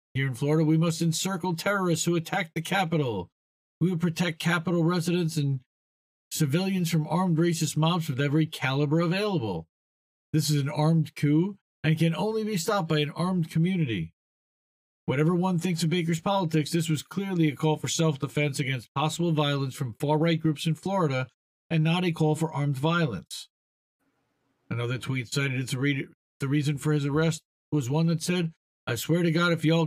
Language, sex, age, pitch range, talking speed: English, male, 50-69, 145-175 Hz, 175 wpm